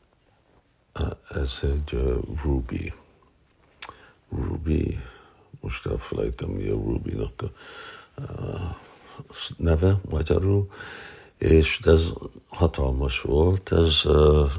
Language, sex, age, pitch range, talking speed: Hungarian, male, 60-79, 70-80 Hz, 80 wpm